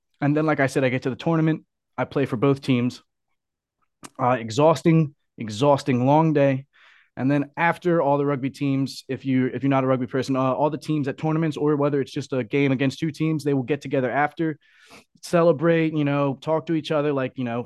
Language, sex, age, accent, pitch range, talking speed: English, male, 20-39, American, 130-160 Hz, 220 wpm